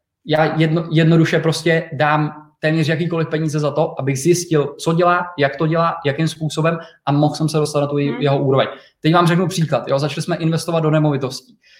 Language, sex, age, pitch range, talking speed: Czech, male, 20-39, 140-160 Hz, 195 wpm